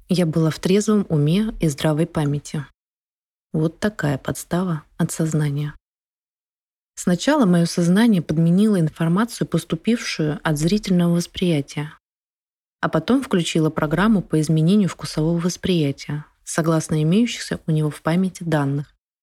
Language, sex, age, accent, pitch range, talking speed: Russian, female, 20-39, native, 150-190 Hz, 115 wpm